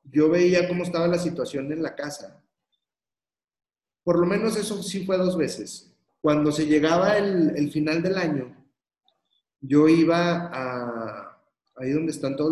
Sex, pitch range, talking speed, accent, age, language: male, 130-160 Hz, 155 wpm, Mexican, 40-59, Spanish